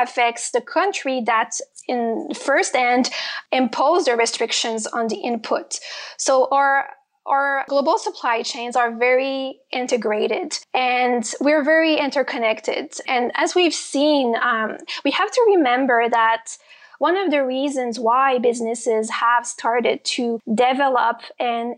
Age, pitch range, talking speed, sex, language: 20-39, 235-280 Hz, 130 wpm, female, English